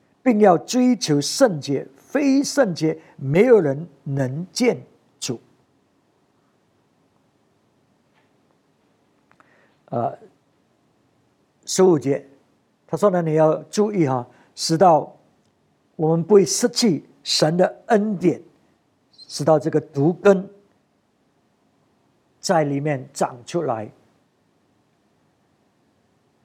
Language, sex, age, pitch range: English, male, 60-79, 150-220 Hz